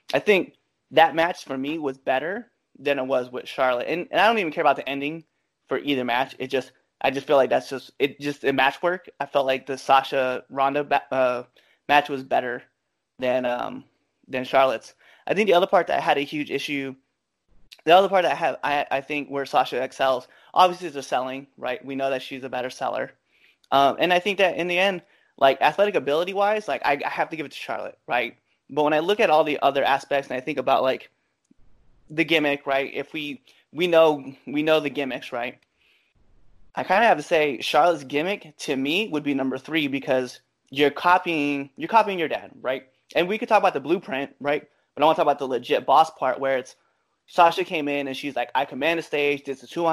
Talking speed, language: 230 wpm, English